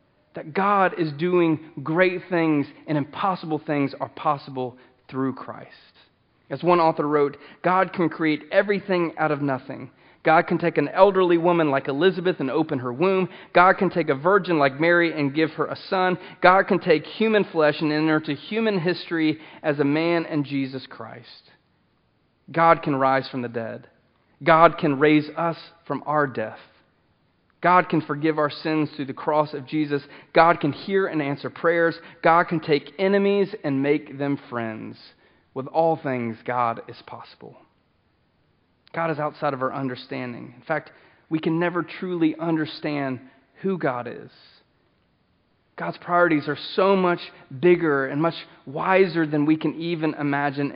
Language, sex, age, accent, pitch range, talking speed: English, male, 40-59, American, 140-175 Hz, 160 wpm